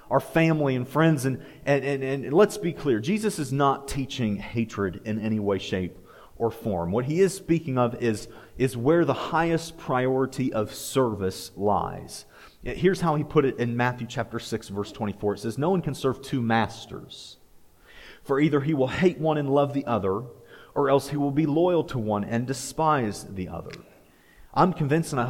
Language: English